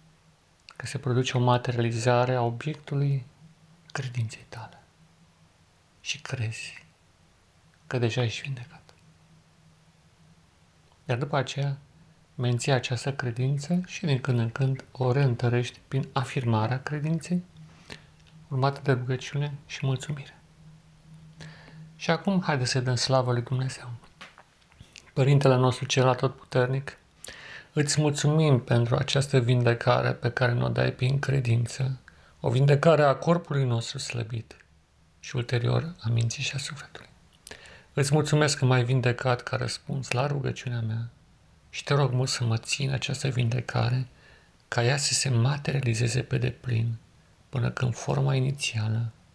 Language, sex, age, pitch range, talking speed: Romanian, male, 40-59, 120-145 Hz, 125 wpm